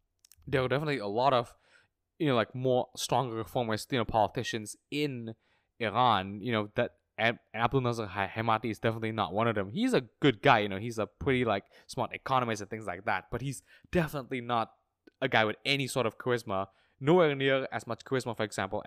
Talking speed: 200 wpm